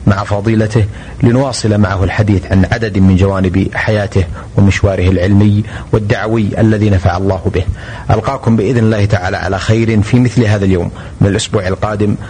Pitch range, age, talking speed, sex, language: 100-115 Hz, 30-49, 145 wpm, male, Arabic